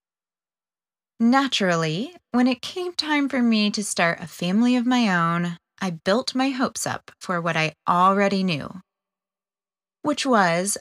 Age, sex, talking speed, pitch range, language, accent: 20-39, female, 145 wpm, 180-255 Hz, English, American